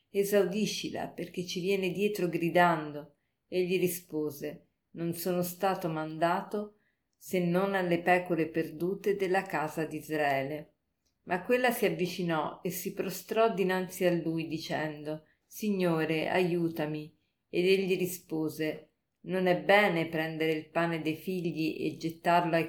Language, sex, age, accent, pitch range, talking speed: Italian, female, 40-59, native, 160-185 Hz, 125 wpm